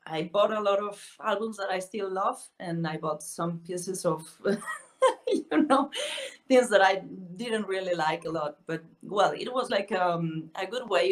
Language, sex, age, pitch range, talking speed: English, female, 30-49, 170-220 Hz, 190 wpm